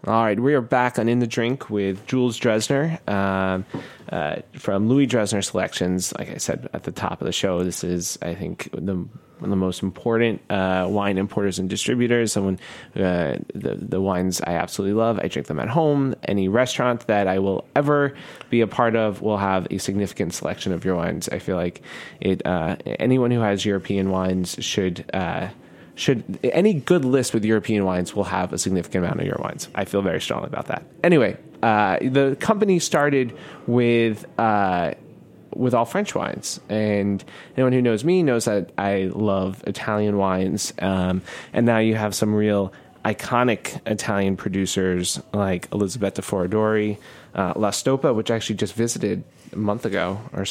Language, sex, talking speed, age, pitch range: English, male, 180 wpm, 20-39, 95-120 Hz